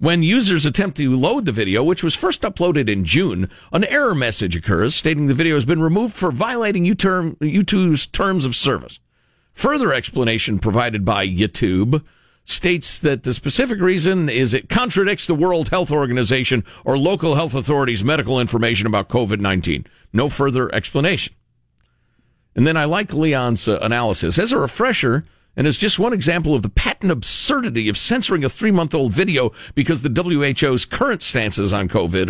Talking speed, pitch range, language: 160 wpm, 125-185 Hz, English